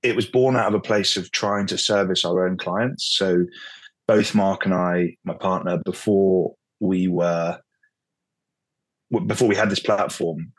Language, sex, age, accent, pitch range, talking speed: English, male, 20-39, British, 95-110 Hz, 165 wpm